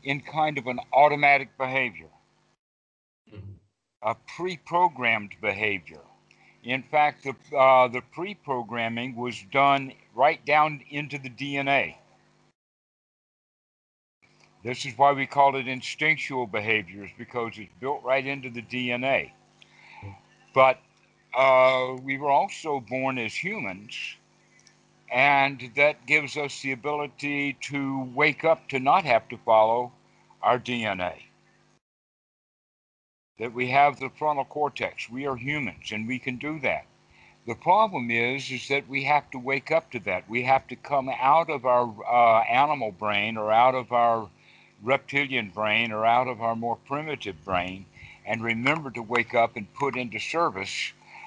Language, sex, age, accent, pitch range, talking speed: English, male, 60-79, American, 115-140 Hz, 140 wpm